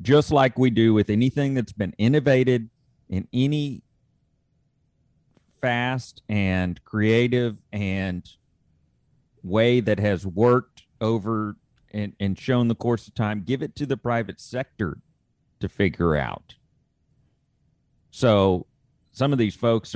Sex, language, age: male, English, 40-59